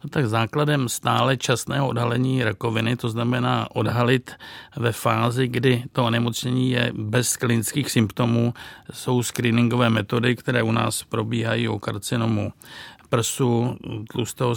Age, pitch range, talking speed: 50-69, 115-130 Hz, 125 wpm